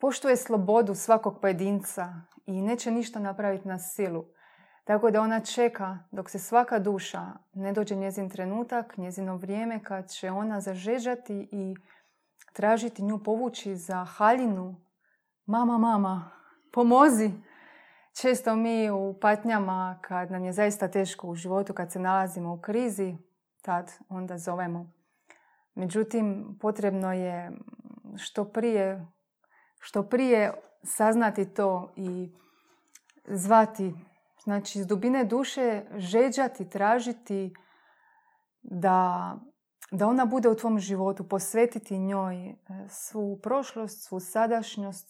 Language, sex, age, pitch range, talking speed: Croatian, female, 30-49, 190-225 Hz, 115 wpm